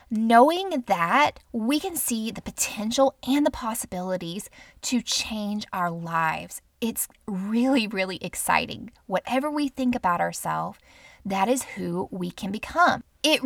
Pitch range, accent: 190-260 Hz, American